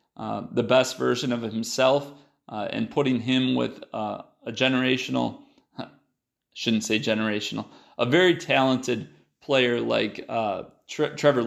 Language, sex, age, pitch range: English, male, 30-49, 115-140 Hz